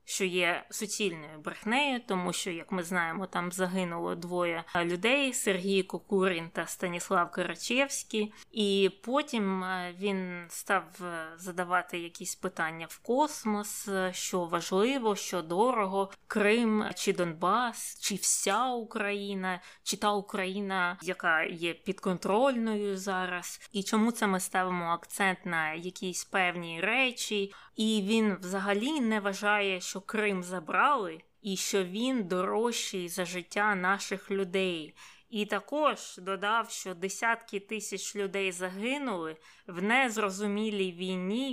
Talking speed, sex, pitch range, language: 120 wpm, female, 180-215 Hz, Ukrainian